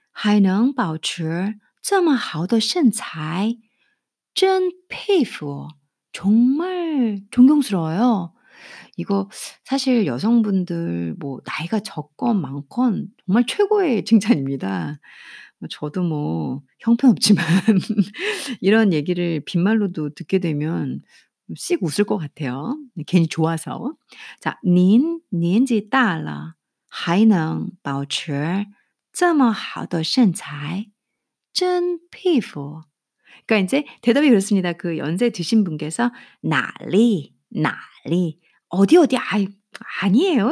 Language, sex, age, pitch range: Korean, female, 50-69, 165-250 Hz